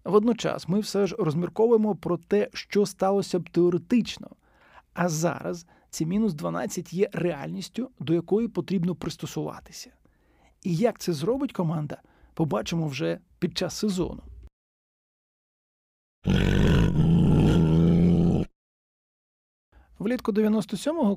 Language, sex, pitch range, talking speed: Ukrainian, male, 165-200 Hz, 95 wpm